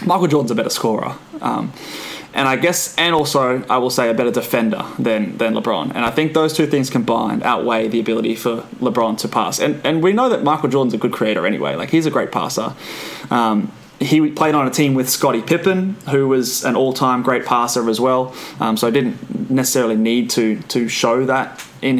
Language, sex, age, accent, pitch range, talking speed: English, male, 20-39, Australian, 115-140 Hz, 215 wpm